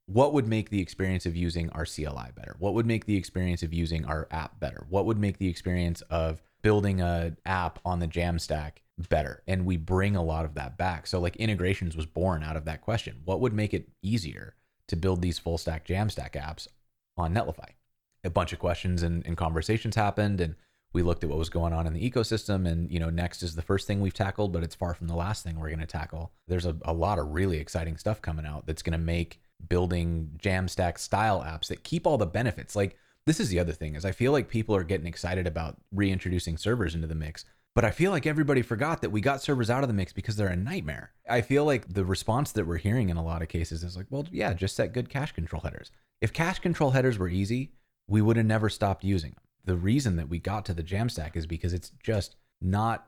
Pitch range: 85-105 Hz